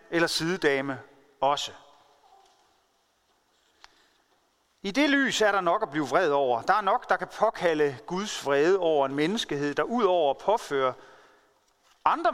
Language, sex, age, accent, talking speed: Danish, male, 40-59, native, 140 wpm